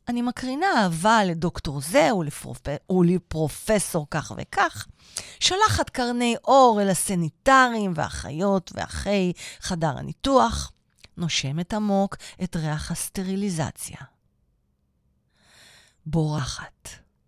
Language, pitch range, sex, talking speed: Hebrew, 145-190 Hz, female, 85 wpm